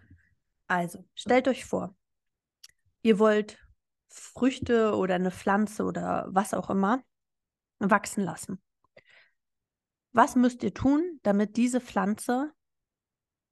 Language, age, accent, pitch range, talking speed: German, 30-49, German, 185-230 Hz, 100 wpm